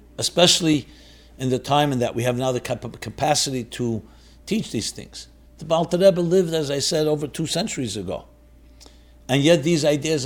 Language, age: English, 60-79